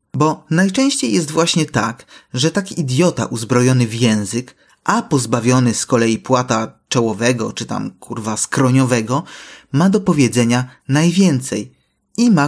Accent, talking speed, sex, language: native, 130 wpm, male, Polish